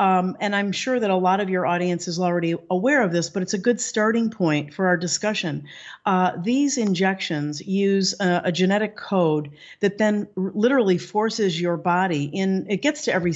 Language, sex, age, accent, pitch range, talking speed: English, female, 50-69, American, 175-220 Hz, 195 wpm